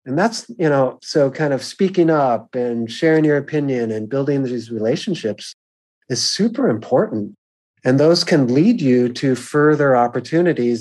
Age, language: 40-59, English